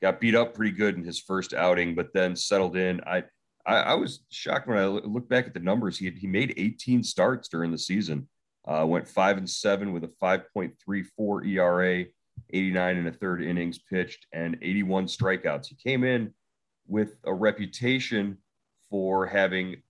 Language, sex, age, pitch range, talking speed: English, male, 40-59, 80-100 Hz, 195 wpm